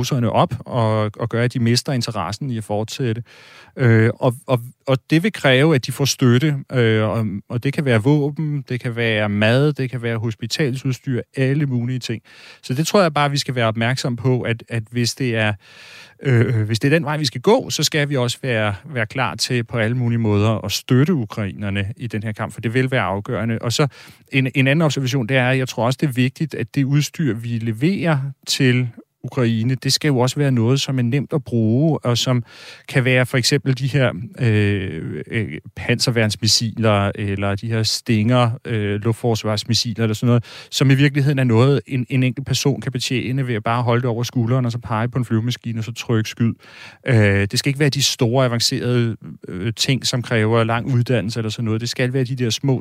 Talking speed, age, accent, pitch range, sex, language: 210 wpm, 30-49, native, 115-135 Hz, male, Danish